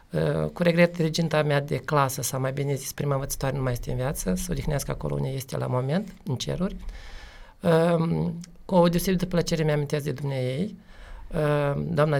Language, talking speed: Romanian, 190 wpm